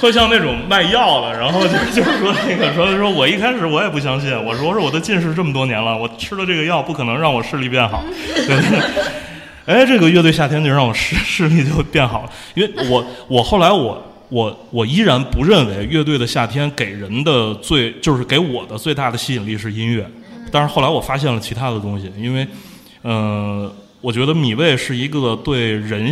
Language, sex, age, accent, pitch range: Chinese, male, 20-39, native, 110-150 Hz